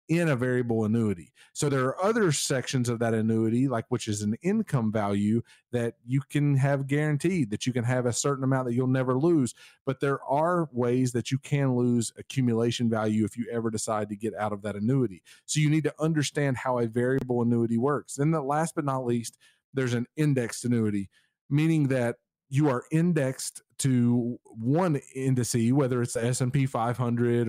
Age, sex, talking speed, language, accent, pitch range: 40-59, male, 190 wpm, English, American, 115-140 Hz